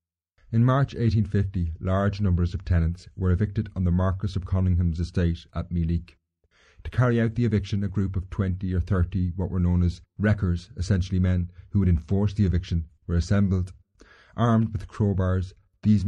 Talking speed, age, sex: 170 wpm, 30-49, male